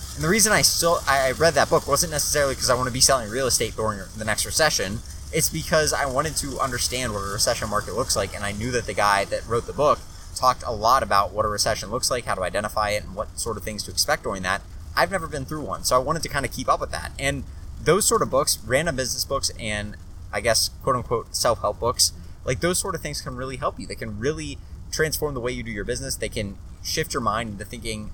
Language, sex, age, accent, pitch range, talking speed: English, male, 20-39, American, 100-130 Hz, 260 wpm